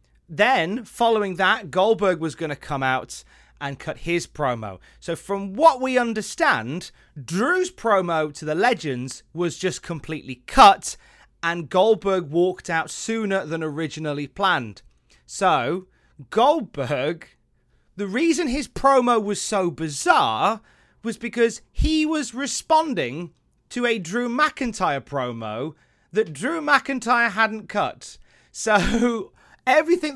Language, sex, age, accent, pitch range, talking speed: English, male, 30-49, British, 160-235 Hz, 120 wpm